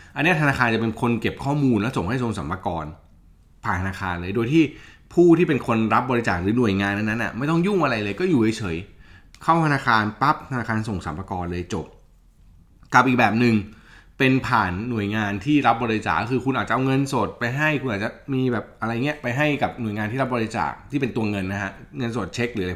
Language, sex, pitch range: Thai, male, 95-130 Hz